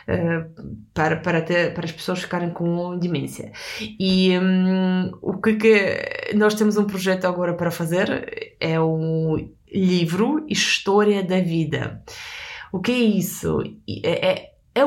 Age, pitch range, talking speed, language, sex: 20-39, 195-250 Hz, 140 wpm, Portuguese, female